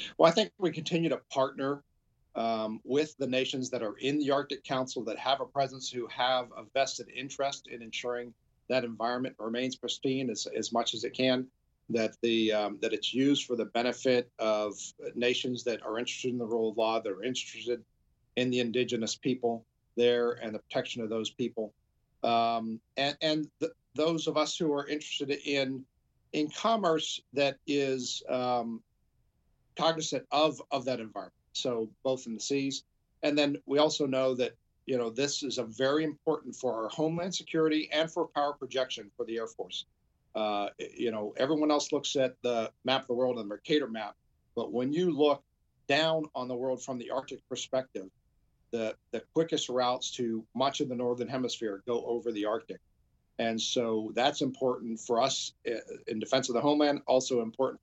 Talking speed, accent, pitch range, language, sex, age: 185 wpm, American, 115-145 Hz, English, male, 50-69